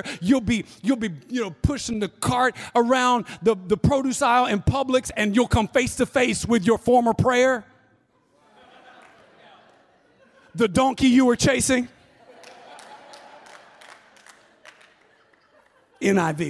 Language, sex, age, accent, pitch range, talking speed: English, male, 50-69, American, 230-280 Hz, 115 wpm